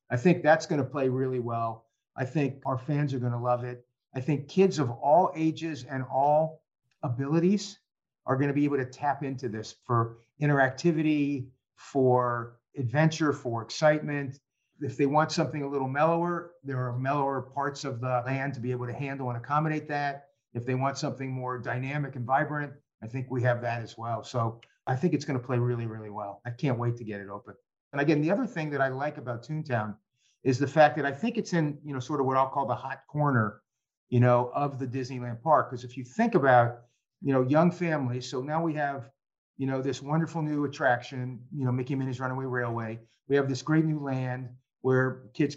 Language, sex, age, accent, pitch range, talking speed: English, male, 50-69, American, 125-145 Hz, 210 wpm